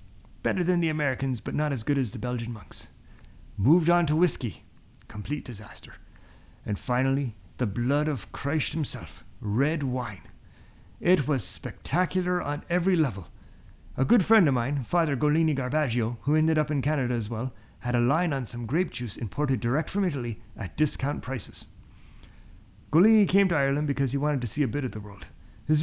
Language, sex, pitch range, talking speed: English, male, 115-175 Hz, 180 wpm